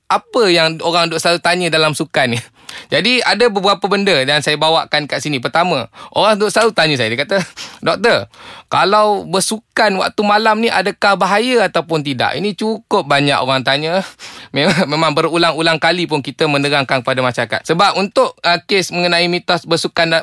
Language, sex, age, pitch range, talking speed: Malay, male, 20-39, 150-195 Hz, 165 wpm